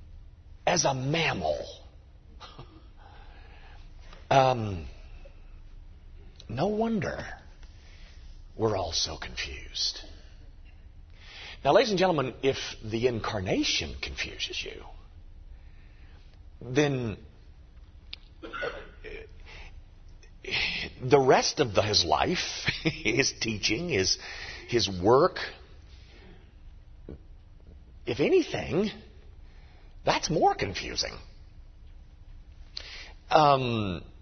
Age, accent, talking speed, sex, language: 50-69, American, 65 wpm, male, English